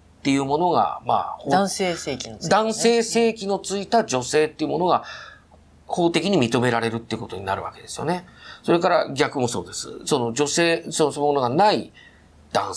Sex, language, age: male, Japanese, 40-59